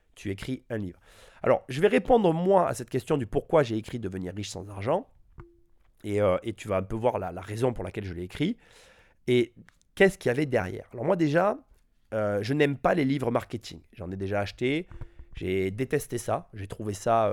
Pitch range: 105-140 Hz